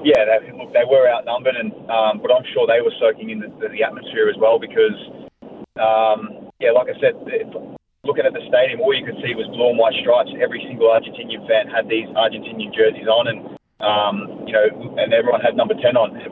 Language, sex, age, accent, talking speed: English, male, 20-39, Australian, 225 wpm